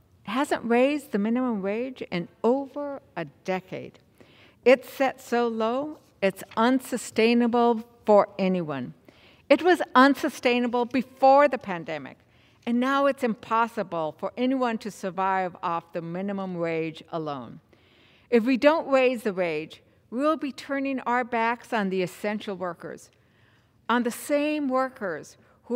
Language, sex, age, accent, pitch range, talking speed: English, female, 60-79, American, 185-260 Hz, 130 wpm